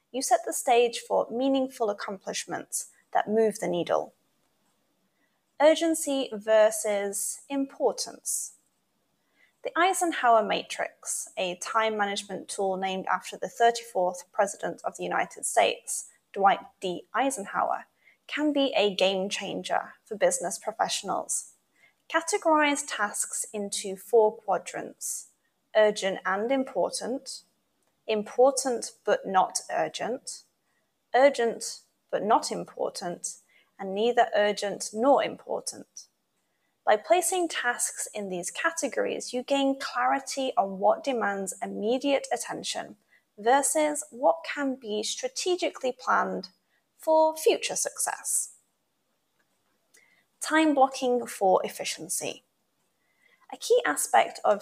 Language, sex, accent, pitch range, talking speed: English, female, British, 205-280 Hz, 100 wpm